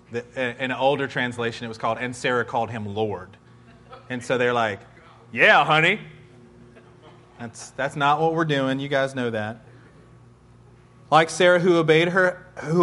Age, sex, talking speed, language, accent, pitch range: 30-49, male, 160 wpm, English, American, 125-185 Hz